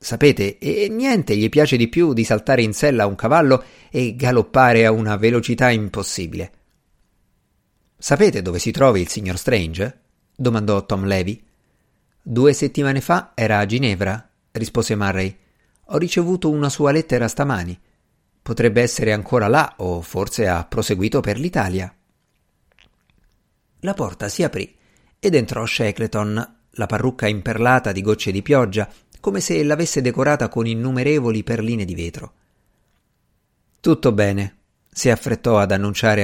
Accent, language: native, Italian